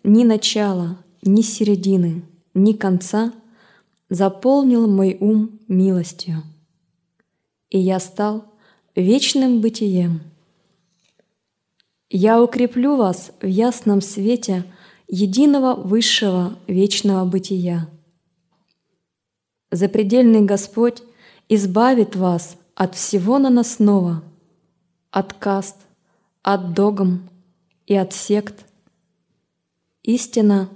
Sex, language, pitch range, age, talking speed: female, Russian, 180-220 Hz, 20-39, 80 wpm